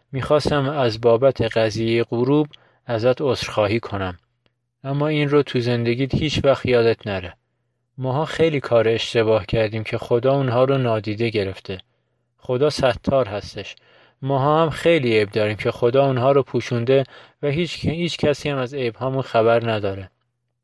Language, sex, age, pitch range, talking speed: Persian, male, 30-49, 115-140 Hz, 150 wpm